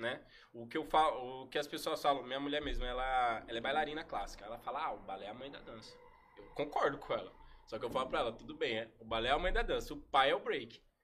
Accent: Brazilian